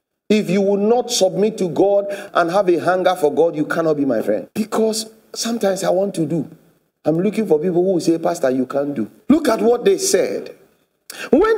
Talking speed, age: 210 wpm, 50-69